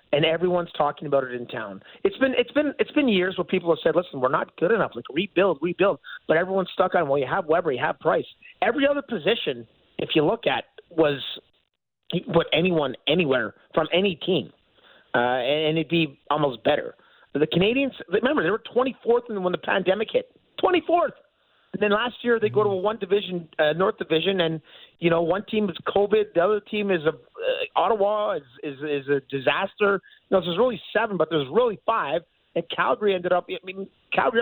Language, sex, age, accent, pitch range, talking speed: English, male, 30-49, American, 160-215 Hz, 205 wpm